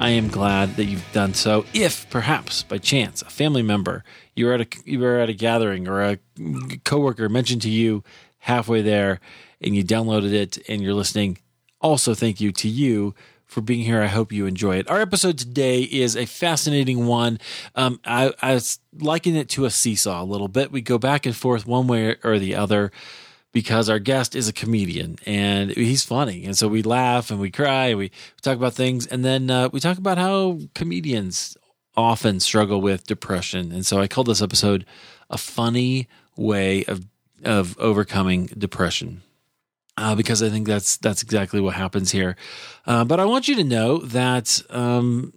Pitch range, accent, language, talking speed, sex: 100-125 Hz, American, English, 190 wpm, male